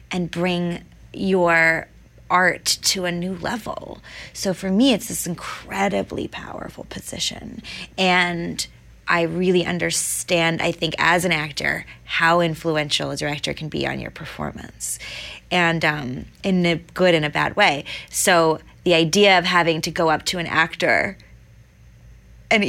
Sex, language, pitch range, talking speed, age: female, English, 165-215 Hz, 145 wpm, 20-39